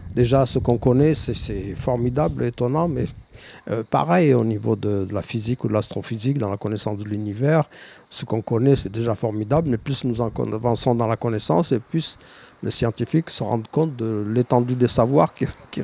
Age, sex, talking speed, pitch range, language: 60-79, male, 195 wpm, 110-135 Hz, French